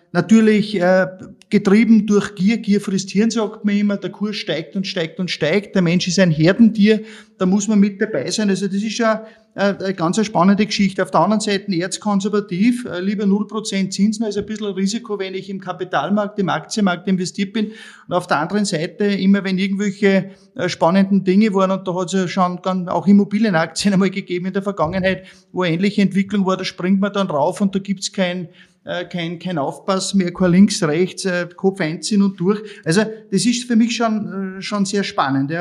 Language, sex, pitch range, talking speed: German, male, 175-205 Hz, 195 wpm